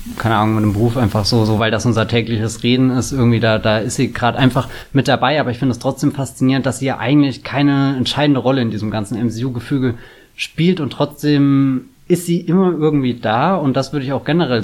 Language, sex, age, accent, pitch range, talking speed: German, male, 20-39, German, 120-155 Hz, 220 wpm